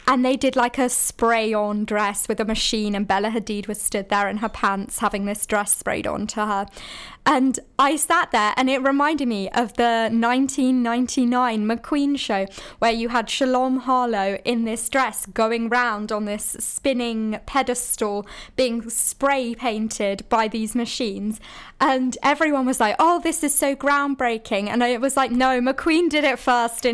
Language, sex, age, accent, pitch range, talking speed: English, female, 20-39, British, 215-260 Hz, 180 wpm